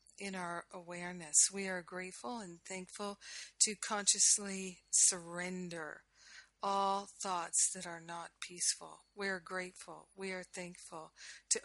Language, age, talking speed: English, 50-69, 125 wpm